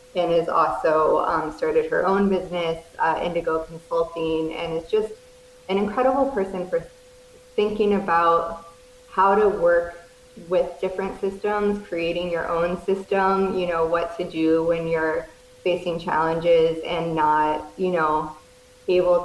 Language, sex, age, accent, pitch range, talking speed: English, female, 20-39, American, 165-200 Hz, 135 wpm